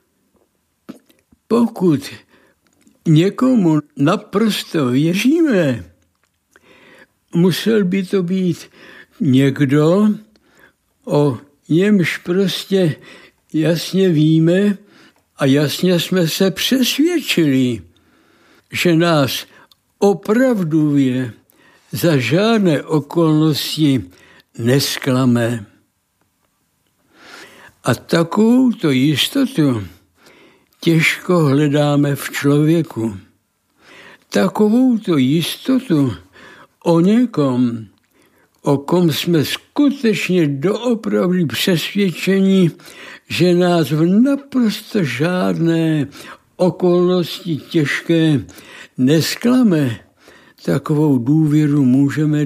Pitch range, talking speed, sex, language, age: 135-190 Hz, 65 wpm, male, Czech, 60-79